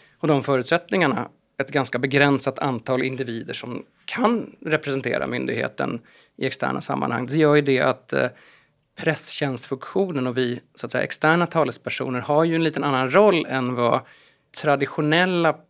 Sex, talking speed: male, 130 wpm